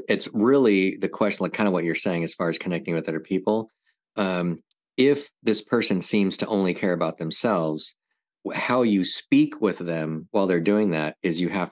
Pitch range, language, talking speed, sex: 85-105 Hz, English, 200 wpm, male